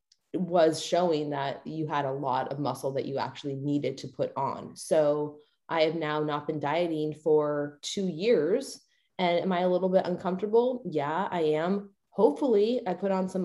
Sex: female